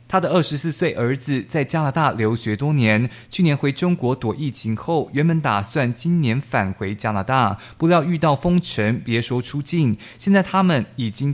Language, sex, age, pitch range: Chinese, male, 20-39, 110-155 Hz